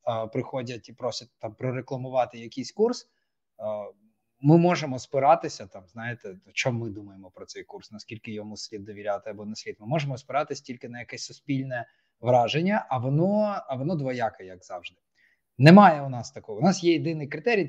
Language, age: Ukrainian, 20-39